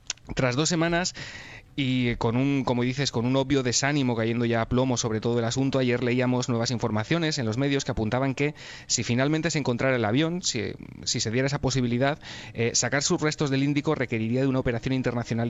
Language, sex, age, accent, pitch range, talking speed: Spanish, male, 30-49, Spanish, 115-140 Hz, 205 wpm